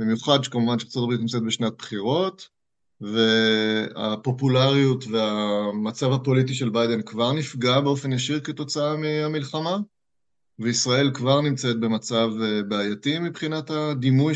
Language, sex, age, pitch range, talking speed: Hebrew, male, 30-49, 115-145 Hz, 105 wpm